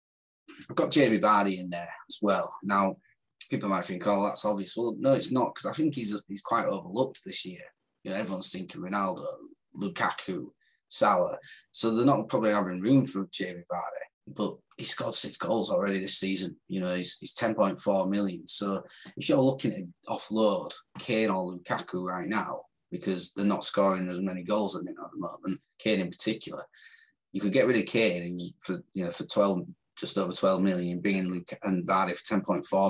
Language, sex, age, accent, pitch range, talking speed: English, male, 20-39, British, 90-110 Hz, 190 wpm